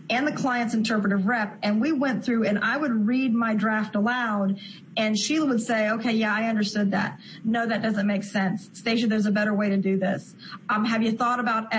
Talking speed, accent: 220 wpm, American